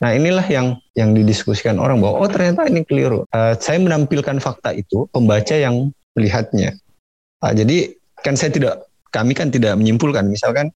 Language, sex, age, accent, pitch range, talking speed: Indonesian, male, 30-49, native, 105-135 Hz, 160 wpm